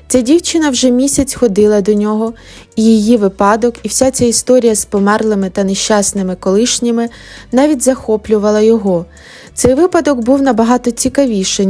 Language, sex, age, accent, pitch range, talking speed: Ukrainian, female, 20-39, native, 195-240 Hz, 140 wpm